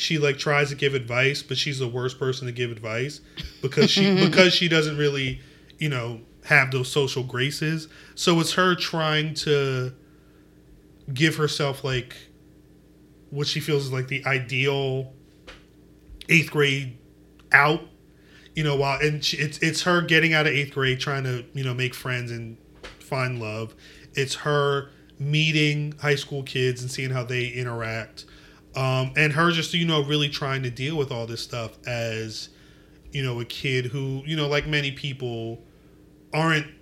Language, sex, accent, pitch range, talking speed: English, male, American, 125-155 Hz, 170 wpm